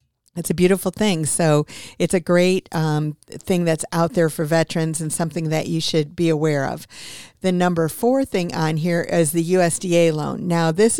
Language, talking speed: English, 190 wpm